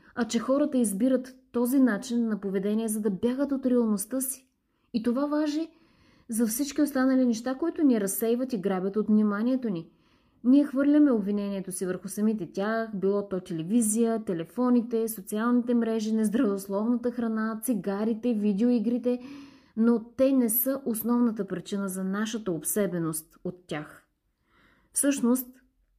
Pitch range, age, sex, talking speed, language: 195-245 Hz, 20-39, female, 135 wpm, Bulgarian